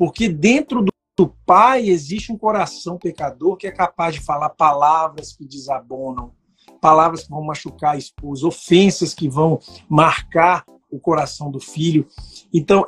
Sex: male